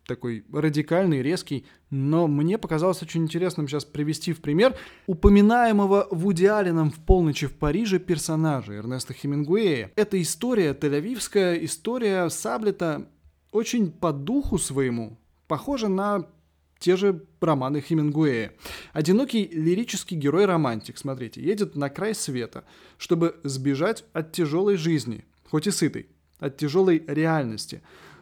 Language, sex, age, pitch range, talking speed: Russian, male, 20-39, 140-190 Hz, 120 wpm